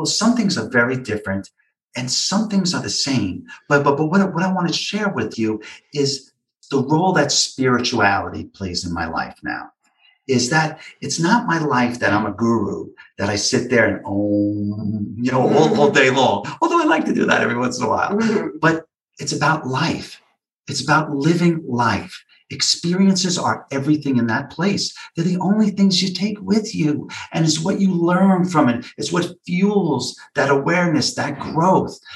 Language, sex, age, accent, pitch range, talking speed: English, male, 50-69, American, 120-165 Hz, 190 wpm